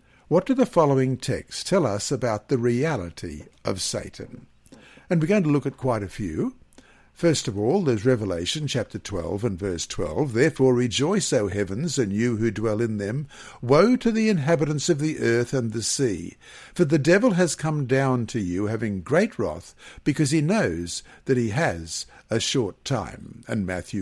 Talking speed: 180 wpm